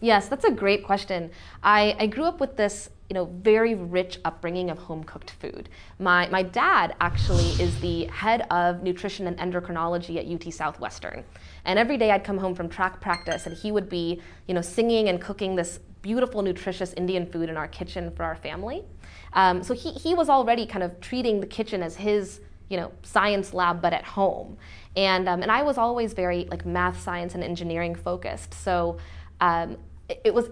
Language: English